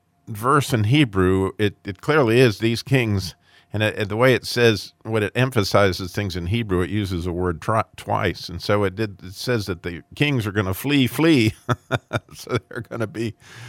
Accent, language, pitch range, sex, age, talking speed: American, English, 95-130 Hz, male, 50-69, 205 wpm